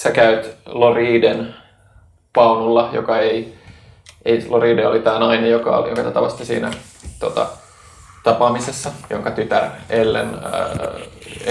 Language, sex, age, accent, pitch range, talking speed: Finnish, male, 20-39, native, 115-125 Hz, 115 wpm